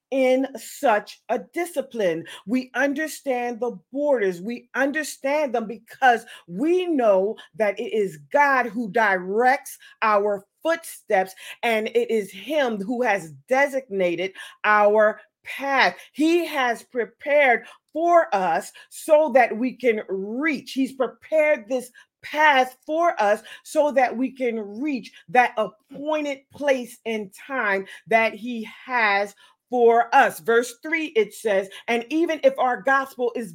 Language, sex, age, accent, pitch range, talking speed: English, female, 40-59, American, 220-275 Hz, 130 wpm